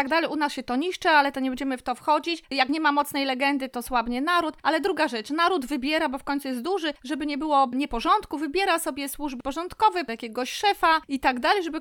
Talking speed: 240 wpm